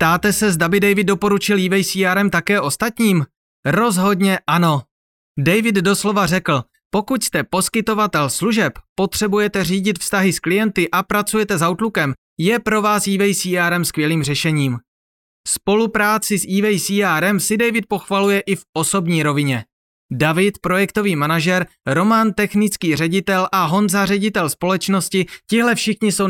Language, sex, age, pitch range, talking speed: Czech, male, 30-49, 145-200 Hz, 130 wpm